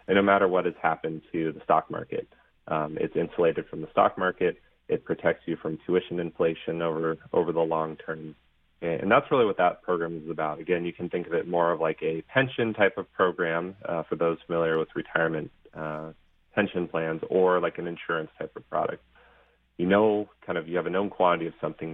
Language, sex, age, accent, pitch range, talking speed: English, male, 30-49, American, 80-90 Hz, 210 wpm